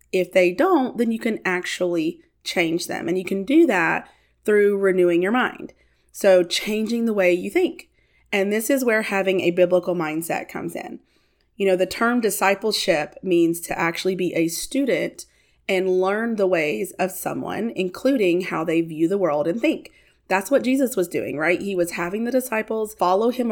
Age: 30-49